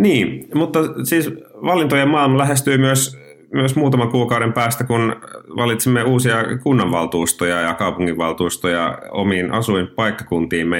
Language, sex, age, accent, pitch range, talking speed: Finnish, male, 30-49, native, 85-110 Hz, 105 wpm